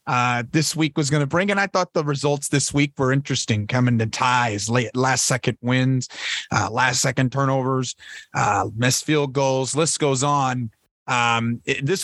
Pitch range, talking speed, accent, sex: 125-150 Hz, 180 wpm, American, male